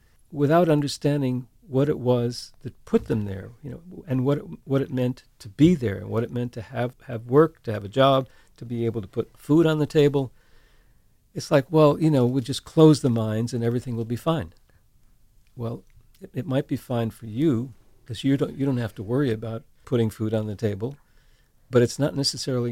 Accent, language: American, English